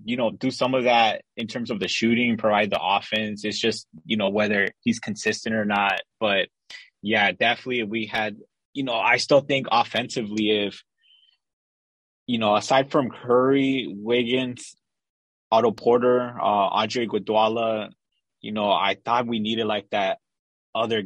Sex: male